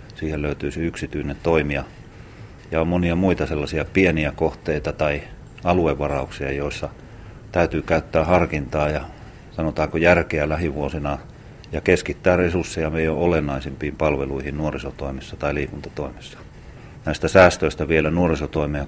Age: 40-59